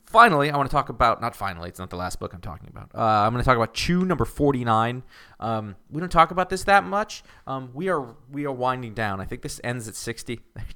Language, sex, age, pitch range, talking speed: English, male, 30-49, 95-120 Hz, 255 wpm